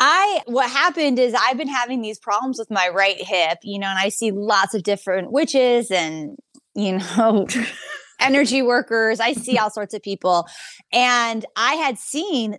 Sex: female